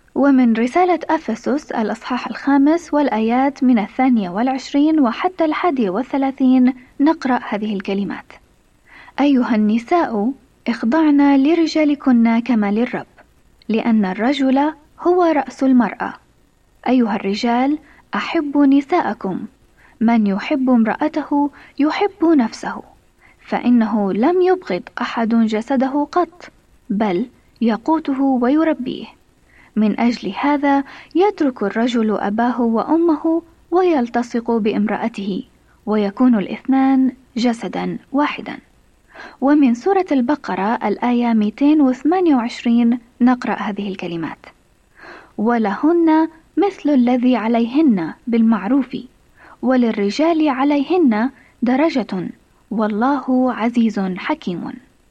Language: Arabic